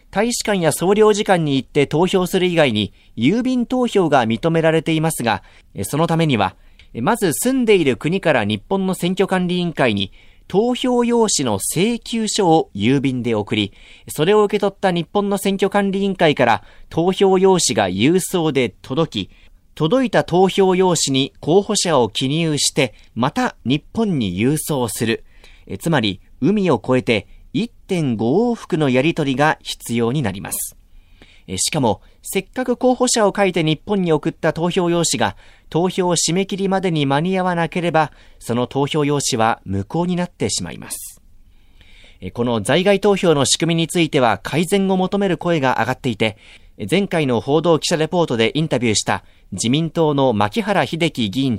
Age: 40-59